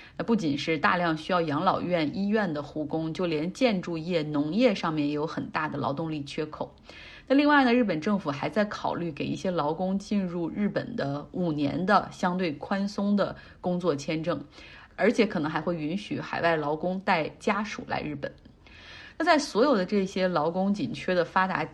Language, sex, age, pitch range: Chinese, female, 30-49, 160-210 Hz